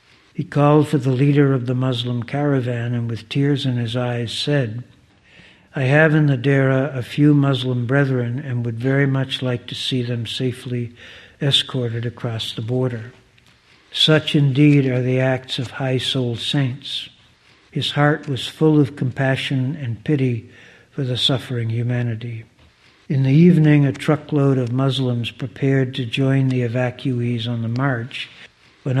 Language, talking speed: English, 155 wpm